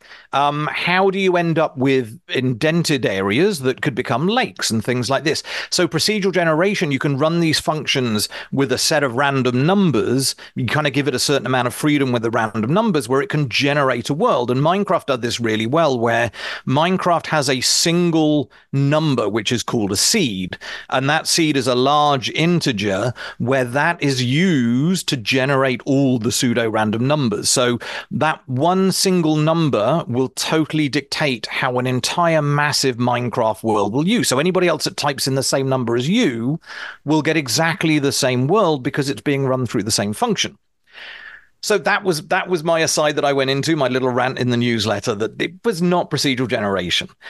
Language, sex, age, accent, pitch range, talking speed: English, male, 40-59, British, 125-165 Hz, 190 wpm